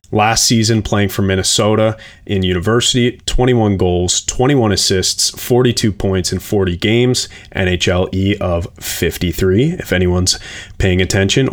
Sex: male